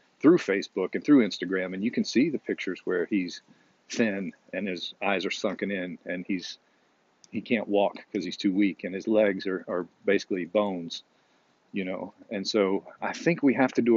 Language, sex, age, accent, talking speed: English, male, 40-59, American, 200 wpm